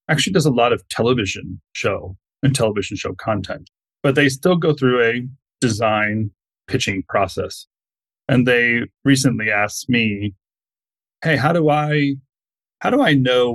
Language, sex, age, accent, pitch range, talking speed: English, male, 30-49, American, 110-130 Hz, 145 wpm